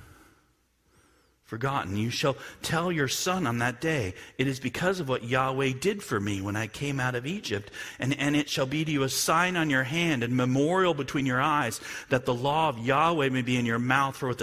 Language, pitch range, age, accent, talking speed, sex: English, 115-155 Hz, 40-59, American, 220 wpm, male